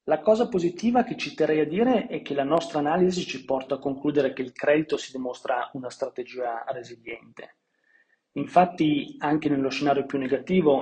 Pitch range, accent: 130-150 Hz, native